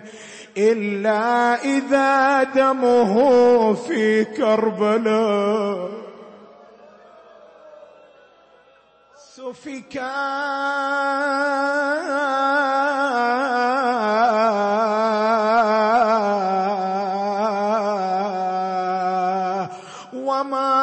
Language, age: Arabic, 30-49